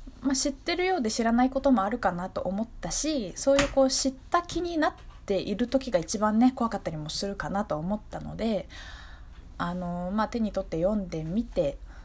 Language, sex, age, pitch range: Japanese, female, 20-39, 185-275 Hz